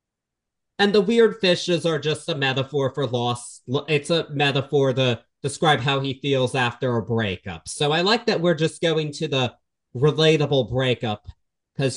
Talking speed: 165 wpm